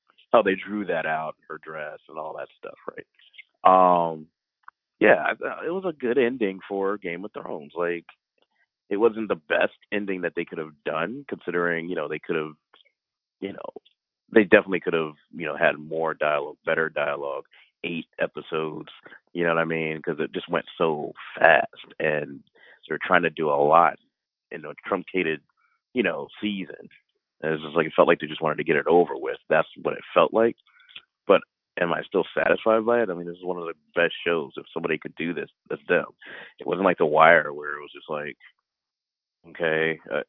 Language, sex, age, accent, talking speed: English, male, 30-49, American, 195 wpm